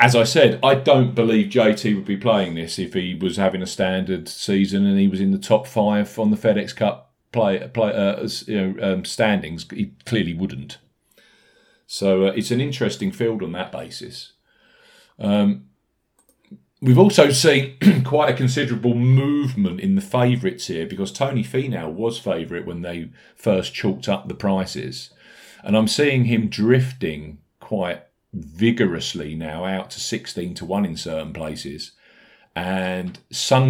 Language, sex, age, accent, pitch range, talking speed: English, male, 40-59, British, 100-135 Hz, 160 wpm